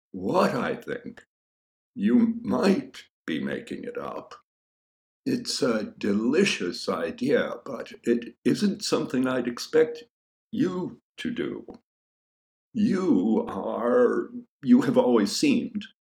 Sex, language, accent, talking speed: male, English, American, 105 wpm